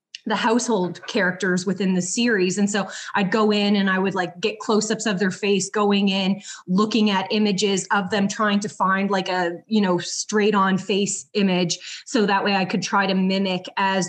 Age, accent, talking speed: 20-39, American, 200 wpm